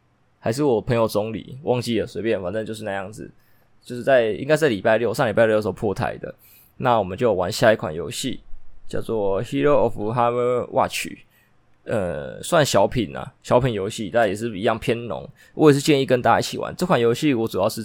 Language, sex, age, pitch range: Chinese, male, 20-39, 110-135 Hz